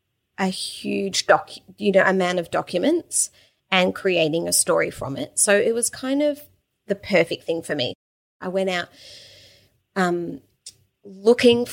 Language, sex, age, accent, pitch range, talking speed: English, female, 30-49, Australian, 165-205 Hz, 155 wpm